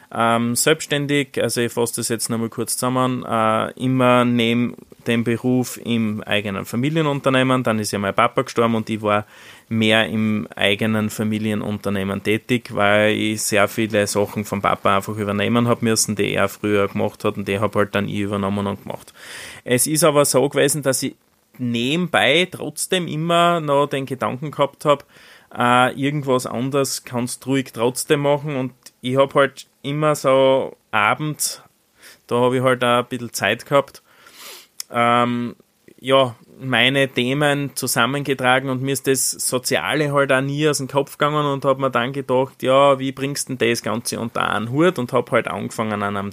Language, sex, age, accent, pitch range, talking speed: German, male, 20-39, Austrian, 110-135 Hz, 170 wpm